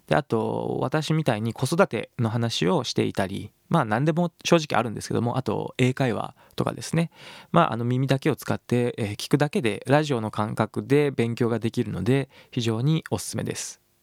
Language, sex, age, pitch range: Japanese, male, 20-39, 110-160 Hz